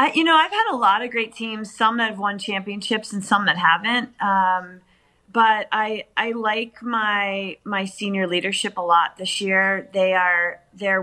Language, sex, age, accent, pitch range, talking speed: English, female, 30-49, American, 180-205 Hz, 190 wpm